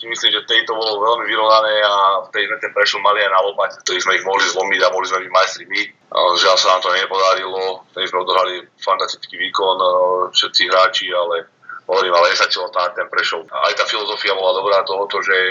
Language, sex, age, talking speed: Slovak, male, 30-49, 195 wpm